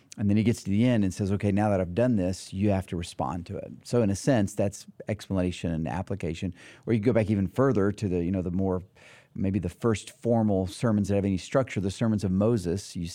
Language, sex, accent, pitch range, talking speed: English, male, American, 95-110 Hz, 245 wpm